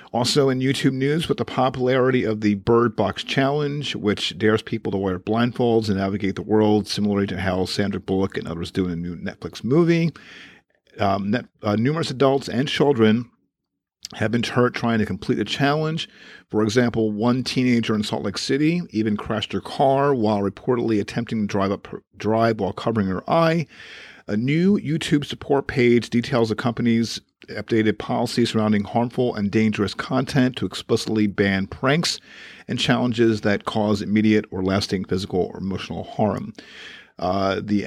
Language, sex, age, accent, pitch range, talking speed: English, male, 50-69, American, 100-130 Hz, 165 wpm